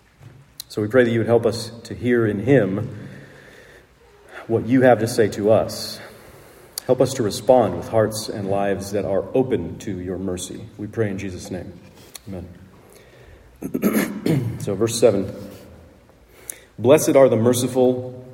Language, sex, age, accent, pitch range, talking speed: English, male, 40-59, American, 105-130 Hz, 150 wpm